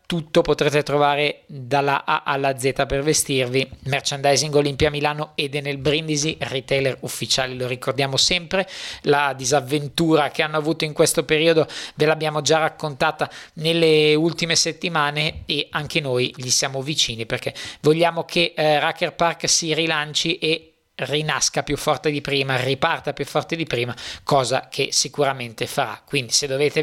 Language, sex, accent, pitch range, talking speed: Italian, male, native, 135-155 Hz, 150 wpm